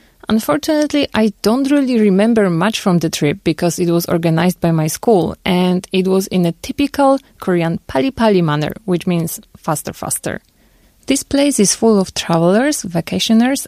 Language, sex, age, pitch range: Korean, female, 30-49, 170-215 Hz